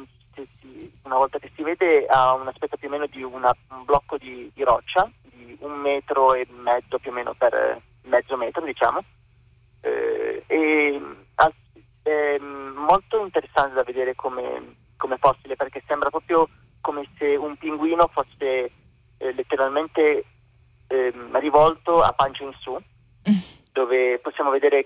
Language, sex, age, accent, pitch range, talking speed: Italian, male, 30-49, native, 125-155 Hz, 140 wpm